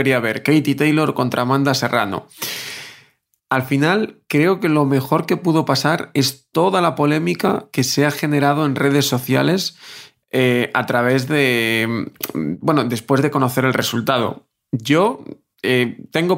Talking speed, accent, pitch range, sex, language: 145 wpm, Spanish, 130-150 Hz, male, Spanish